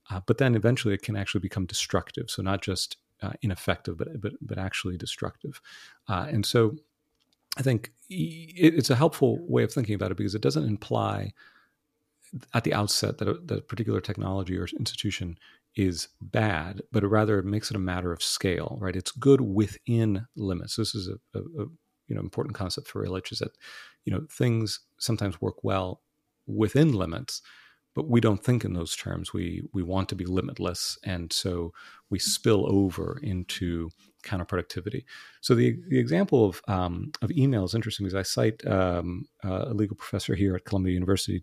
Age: 40-59